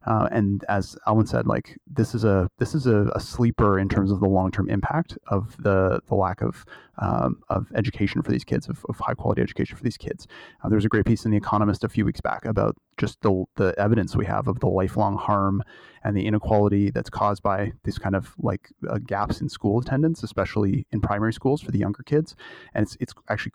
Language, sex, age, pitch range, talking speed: English, male, 30-49, 100-120 Hz, 225 wpm